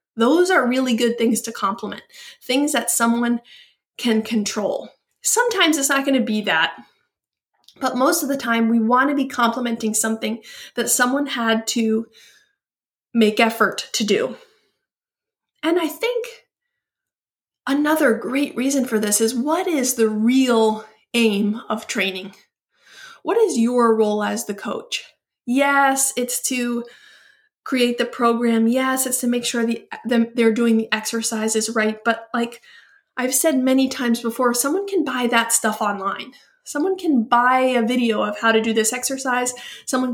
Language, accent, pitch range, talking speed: English, American, 220-270 Hz, 150 wpm